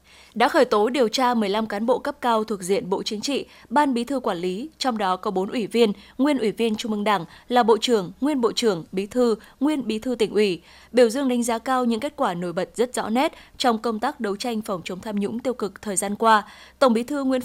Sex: female